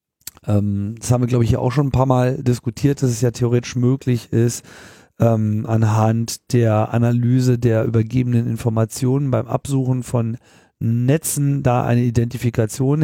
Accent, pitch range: German, 110-130 Hz